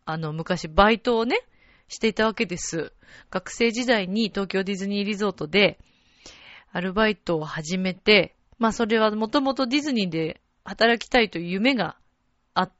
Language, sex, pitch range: Japanese, female, 160-235 Hz